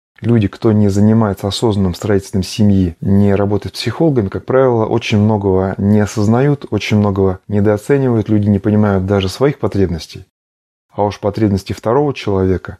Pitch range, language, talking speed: 95-115 Hz, Russian, 140 wpm